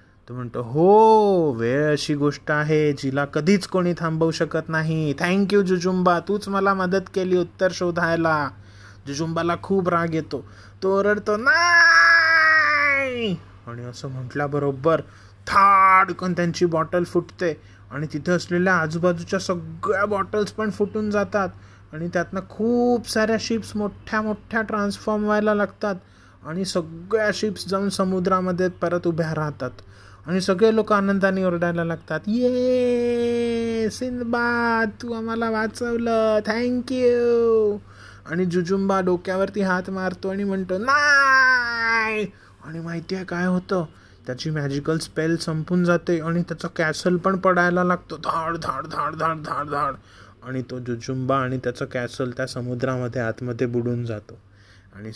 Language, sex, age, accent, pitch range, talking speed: Marathi, male, 20-39, native, 145-210 Hz, 110 wpm